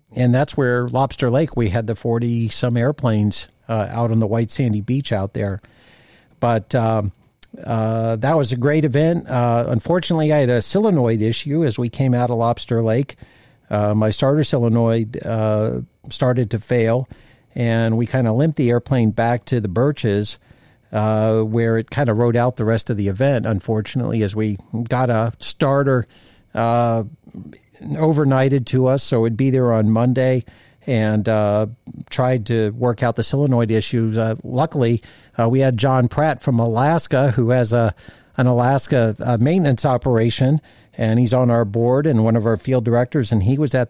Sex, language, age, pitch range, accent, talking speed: male, English, 50-69, 115-130 Hz, American, 175 wpm